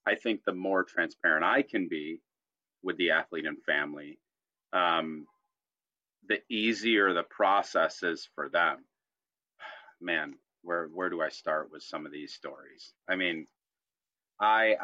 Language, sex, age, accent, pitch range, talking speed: English, male, 30-49, American, 95-120 Hz, 140 wpm